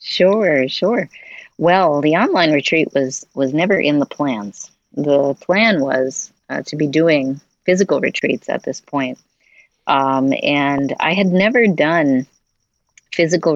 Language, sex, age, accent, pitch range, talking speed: English, female, 40-59, American, 135-160 Hz, 135 wpm